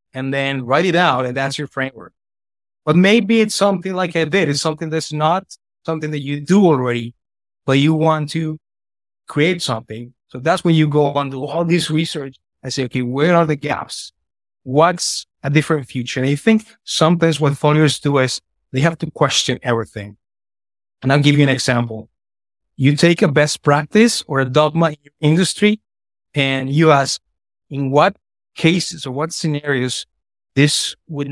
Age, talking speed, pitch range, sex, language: 30-49, 180 wpm, 130-160 Hz, male, English